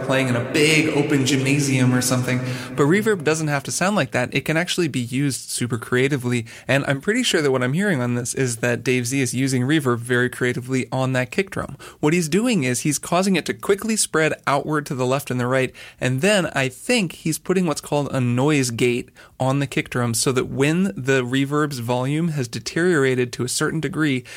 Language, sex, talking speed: English, male, 220 wpm